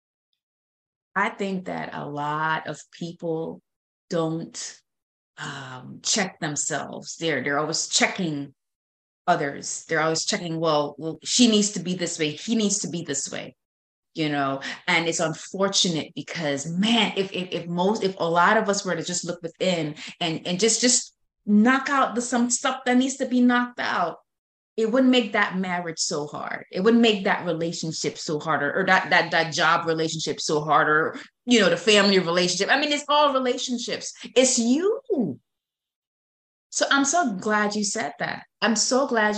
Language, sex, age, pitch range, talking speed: English, female, 30-49, 160-225 Hz, 170 wpm